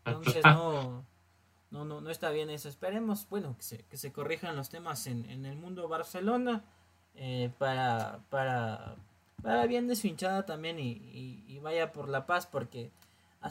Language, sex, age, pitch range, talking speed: Spanish, male, 20-39, 120-160 Hz, 165 wpm